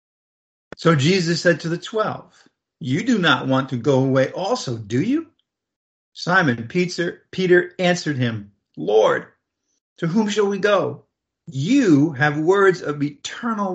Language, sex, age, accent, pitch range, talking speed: English, male, 50-69, American, 130-175 Hz, 135 wpm